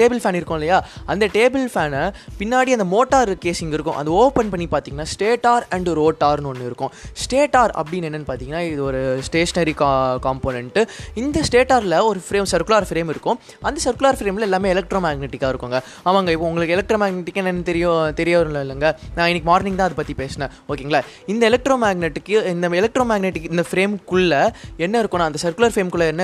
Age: 20-39